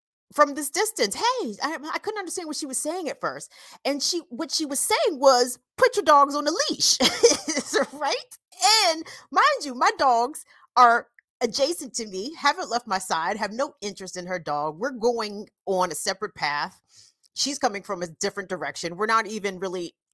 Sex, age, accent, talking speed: female, 40-59, American, 190 wpm